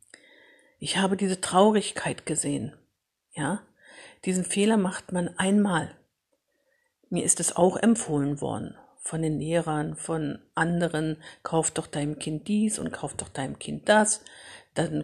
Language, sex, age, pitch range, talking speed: German, female, 50-69, 155-190 Hz, 135 wpm